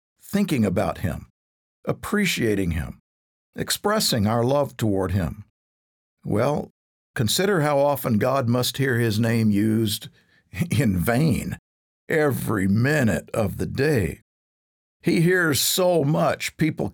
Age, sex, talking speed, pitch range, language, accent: 50-69, male, 115 wpm, 100-145 Hz, English, American